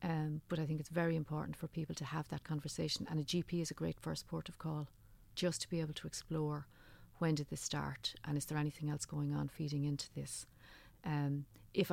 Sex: female